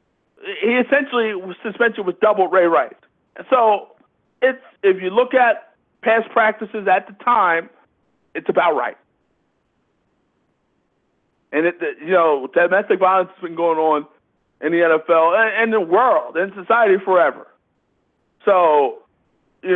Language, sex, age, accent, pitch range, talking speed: English, male, 50-69, American, 165-245 Hz, 135 wpm